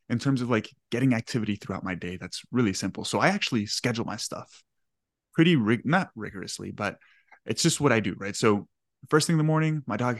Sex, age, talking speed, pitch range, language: male, 20-39, 210 wpm, 110-145 Hz, English